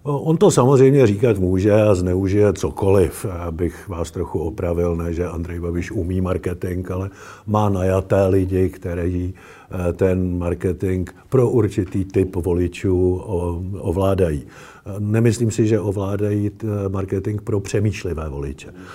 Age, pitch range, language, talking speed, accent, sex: 50-69, 95-120 Hz, Czech, 120 wpm, native, male